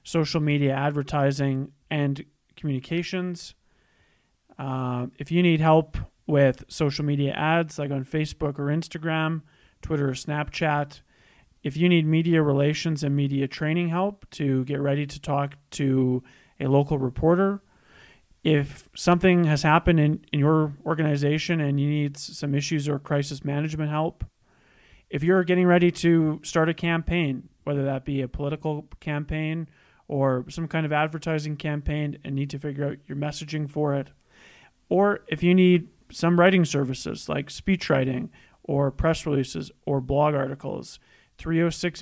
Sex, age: male, 30-49